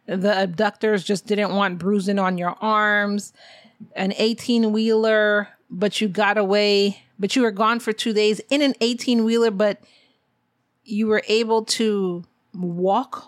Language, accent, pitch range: English, American, 190-225 Hz